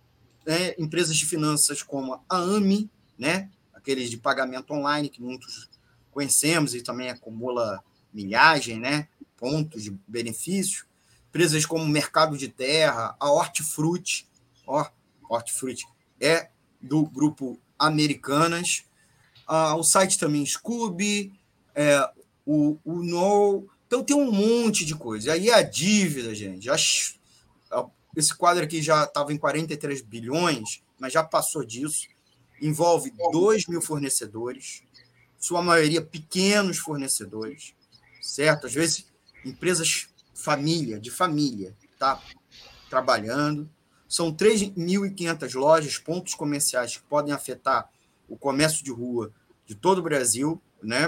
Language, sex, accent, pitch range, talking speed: Portuguese, male, Brazilian, 125-170 Hz, 120 wpm